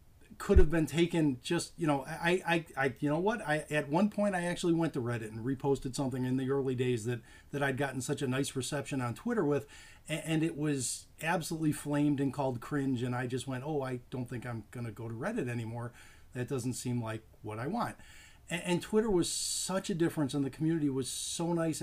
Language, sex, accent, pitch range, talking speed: English, male, American, 130-170 Hz, 230 wpm